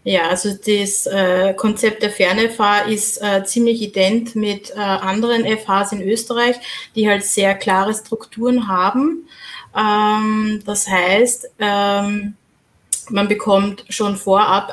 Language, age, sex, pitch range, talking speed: German, 20-39, female, 190-230 Hz, 125 wpm